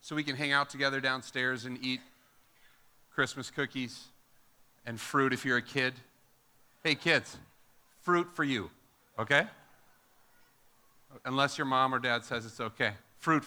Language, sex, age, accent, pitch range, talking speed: English, male, 40-59, American, 130-175 Hz, 145 wpm